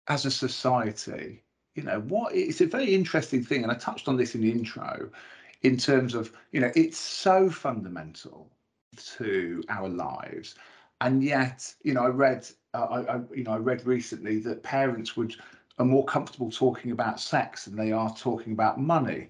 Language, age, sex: English, 50-69, male